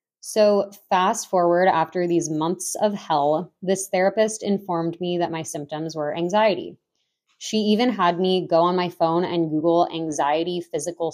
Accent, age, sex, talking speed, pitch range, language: American, 20-39, female, 155 wpm, 155-185 Hz, English